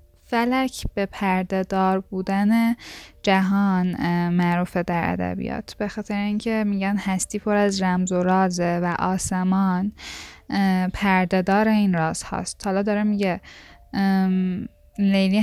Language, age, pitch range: Persian, 10-29, 180-205 Hz